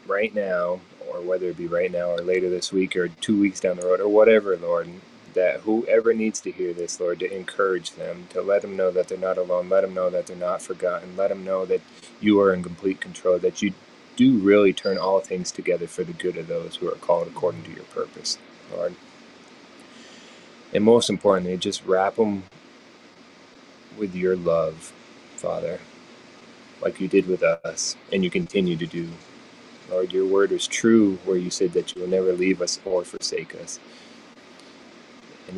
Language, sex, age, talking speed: English, male, 30-49, 190 wpm